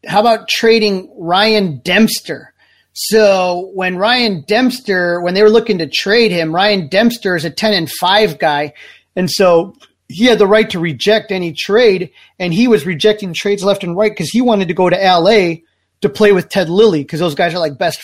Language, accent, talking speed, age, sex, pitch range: English, American, 200 wpm, 30-49, male, 175-215 Hz